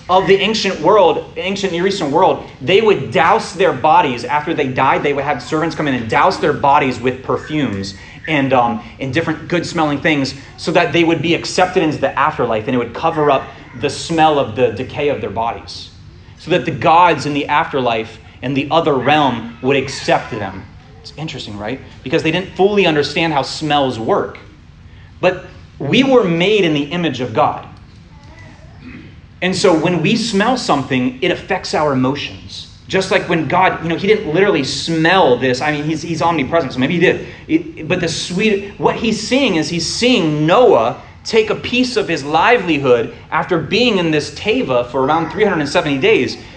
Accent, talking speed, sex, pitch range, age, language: American, 185 wpm, male, 130-180 Hz, 30-49, English